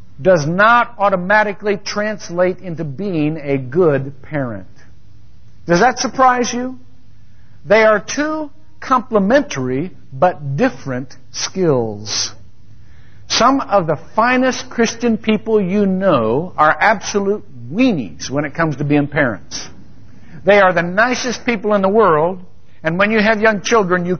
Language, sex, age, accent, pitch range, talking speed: English, male, 60-79, American, 140-225 Hz, 130 wpm